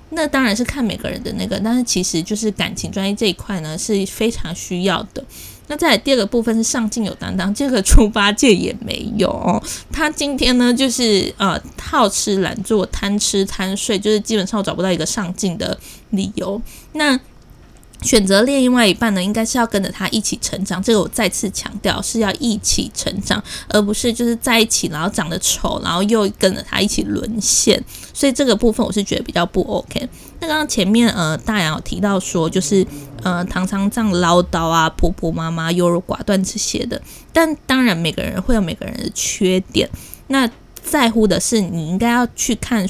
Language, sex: Chinese, female